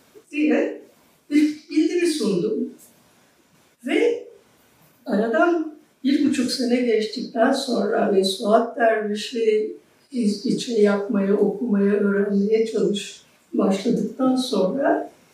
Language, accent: Turkish, native